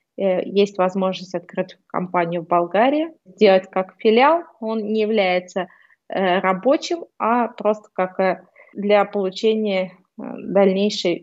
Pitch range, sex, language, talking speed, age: 180-210 Hz, female, Russian, 100 wpm, 20-39